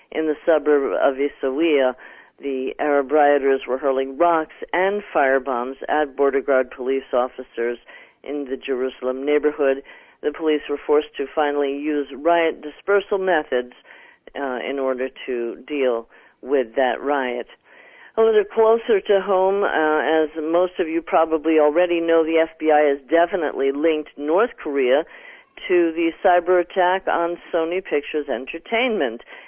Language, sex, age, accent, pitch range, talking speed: English, female, 50-69, American, 145-185 Hz, 140 wpm